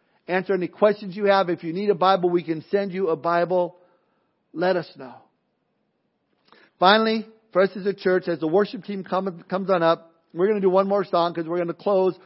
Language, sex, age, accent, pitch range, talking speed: English, male, 50-69, American, 175-215 Hz, 215 wpm